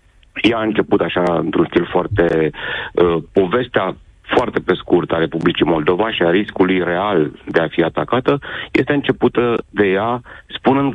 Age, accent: 40-59, native